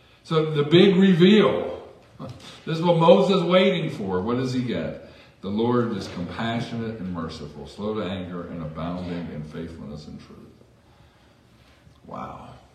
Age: 50-69